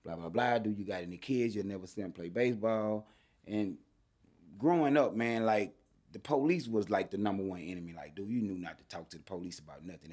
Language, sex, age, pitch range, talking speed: English, male, 30-49, 105-130 Hz, 230 wpm